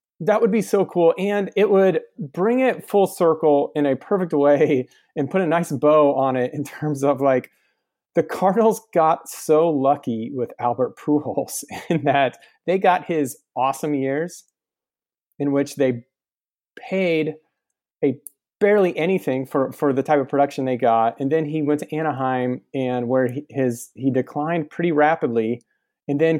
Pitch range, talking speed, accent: 125-165 Hz, 165 wpm, American